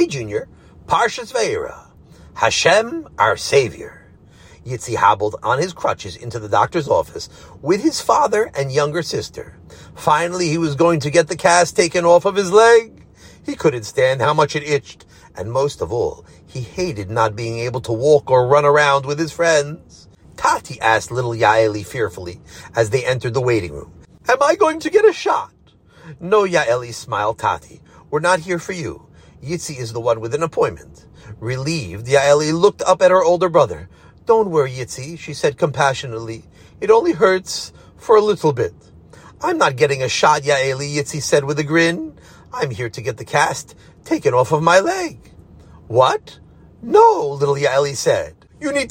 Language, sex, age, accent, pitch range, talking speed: English, male, 40-59, American, 130-205 Hz, 175 wpm